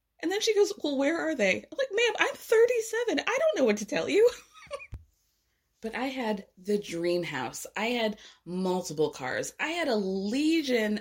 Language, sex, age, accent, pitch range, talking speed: English, female, 20-39, American, 185-280 Hz, 185 wpm